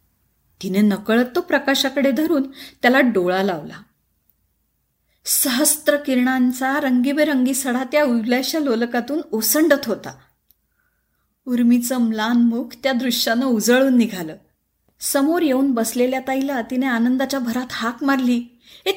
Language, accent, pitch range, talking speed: Marathi, native, 225-285 Hz, 95 wpm